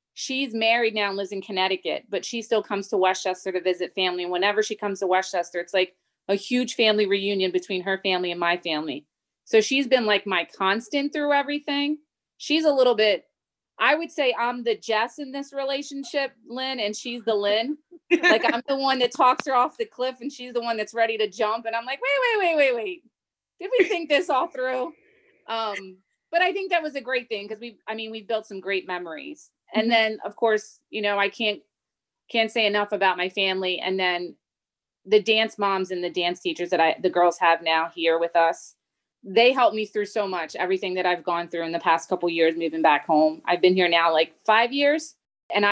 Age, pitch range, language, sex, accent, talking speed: 30-49, 185-255 Hz, English, female, American, 225 wpm